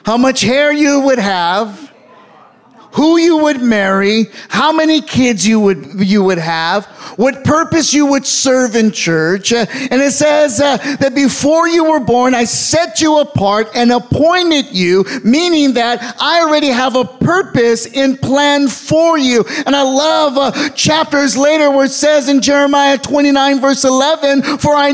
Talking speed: 165 wpm